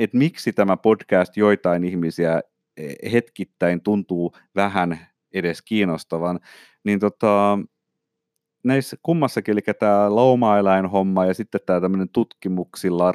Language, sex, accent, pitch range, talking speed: Finnish, male, native, 95-120 Hz, 105 wpm